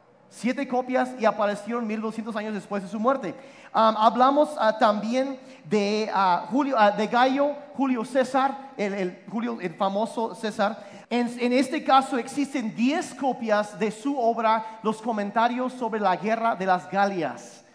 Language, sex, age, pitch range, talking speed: Spanish, male, 40-59, 200-245 Hz, 155 wpm